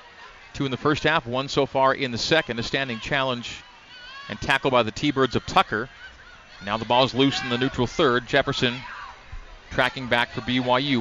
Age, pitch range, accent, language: 40-59, 120-140 Hz, American, English